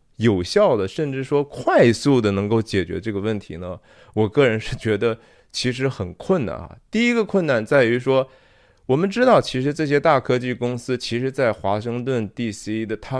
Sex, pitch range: male, 115-185 Hz